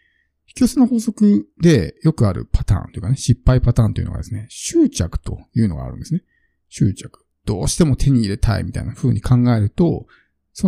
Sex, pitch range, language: male, 105-150 Hz, Japanese